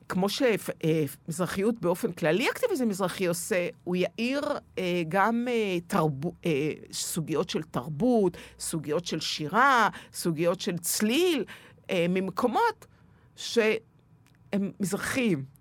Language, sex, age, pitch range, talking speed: Hebrew, female, 50-69, 165-230 Hz, 105 wpm